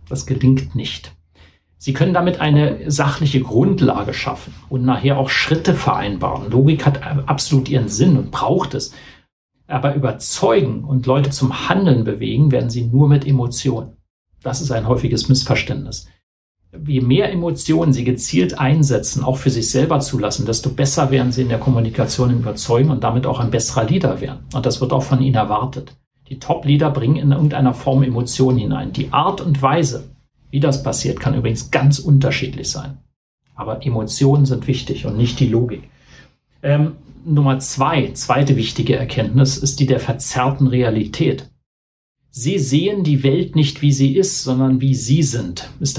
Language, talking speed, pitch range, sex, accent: German, 165 wpm, 125-140 Hz, male, German